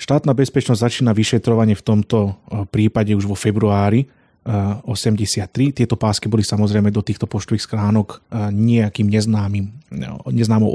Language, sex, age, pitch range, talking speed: Slovak, male, 30-49, 105-115 Hz, 125 wpm